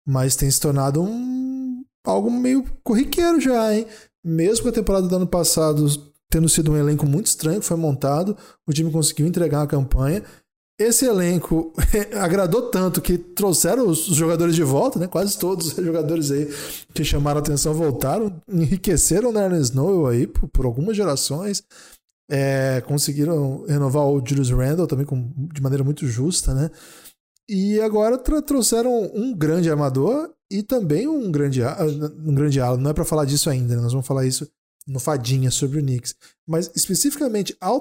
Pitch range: 145-220 Hz